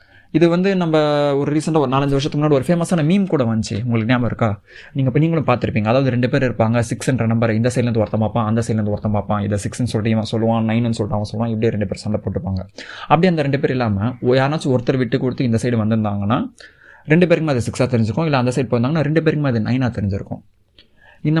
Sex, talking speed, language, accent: male, 205 wpm, Tamil, native